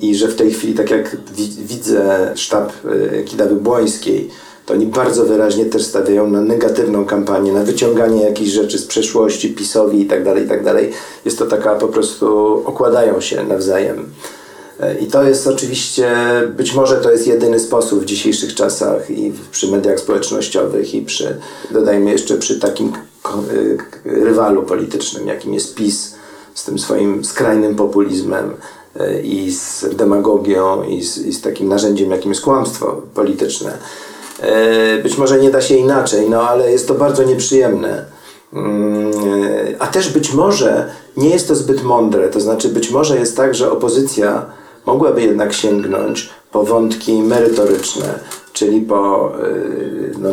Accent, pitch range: native, 105-135 Hz